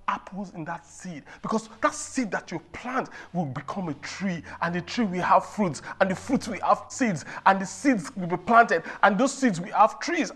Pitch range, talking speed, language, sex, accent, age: 205-290 Hz, 220 wpm, English, male, Nigerian, 40-59